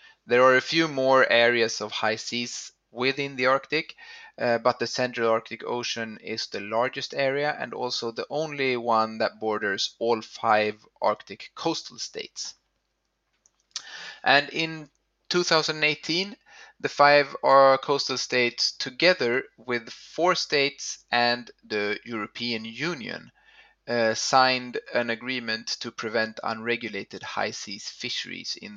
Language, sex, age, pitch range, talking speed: English, male, 30-49, 115-145 Hz, 125 wpm